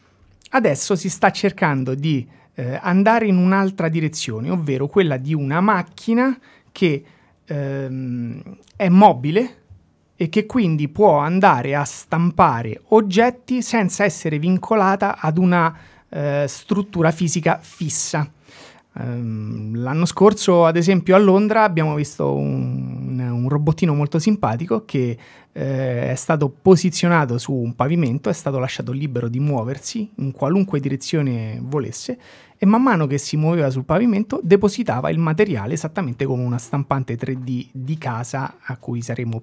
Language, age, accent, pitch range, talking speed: Italian, 30-49, native, 130-195 Hz, 130 wpm